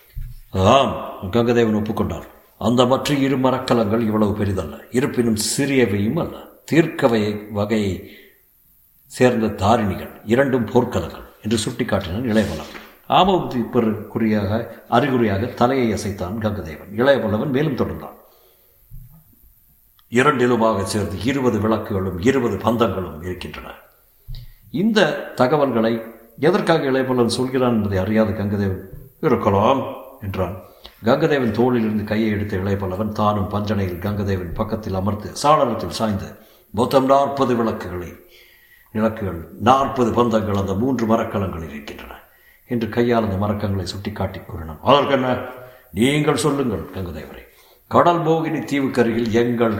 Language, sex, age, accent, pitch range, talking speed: Tamil, male, 60-79, native, 100-125 Hz, 100 wpm